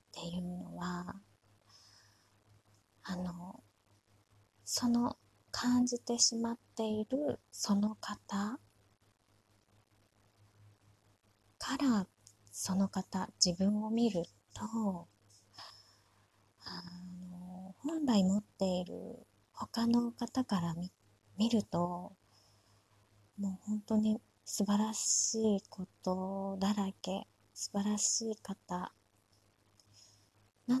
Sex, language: female, Japanese